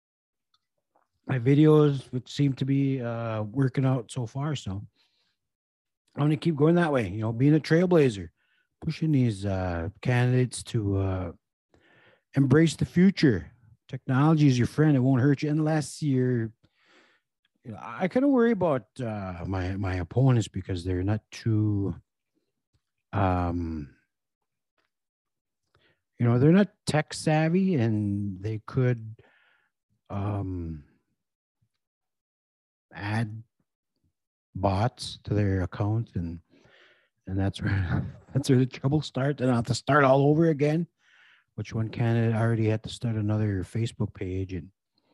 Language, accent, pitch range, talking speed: English, American, 100-145 Hz, 135 wpm